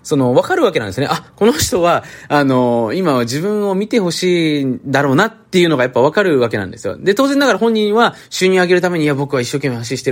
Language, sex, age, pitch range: Japanese, male, 20-39, 115-195 Hz